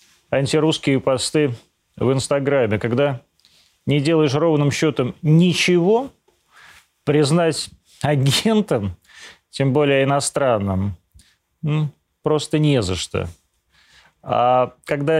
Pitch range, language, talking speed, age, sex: 115-155 Hz, Russian, 85 wpm, 30-49, male